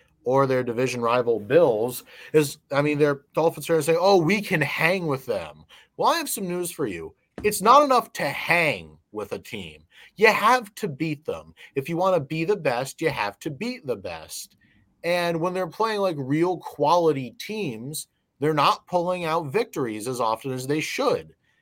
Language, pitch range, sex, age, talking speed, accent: English, 135-190 Hz, male, 30-49, 195 wpm, American